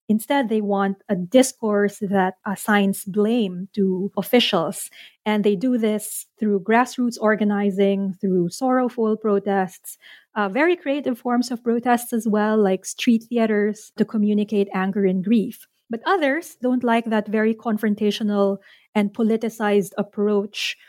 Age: 20-39